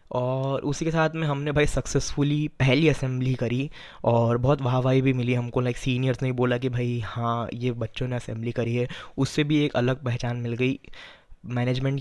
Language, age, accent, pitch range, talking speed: Hindi, 20-39, native, 120-140 Hz, 195 wpm